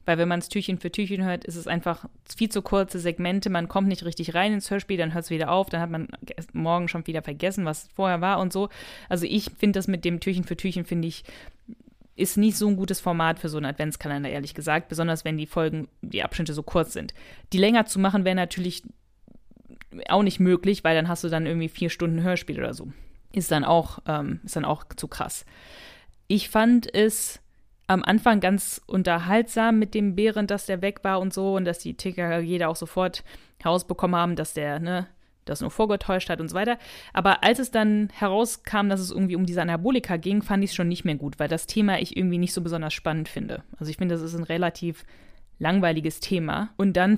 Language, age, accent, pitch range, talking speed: German, 20-39, German, 165-195 Hz, 225 wpm